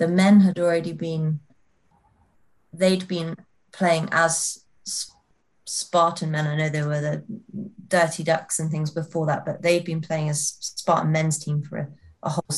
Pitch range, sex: 155-175 Hz, female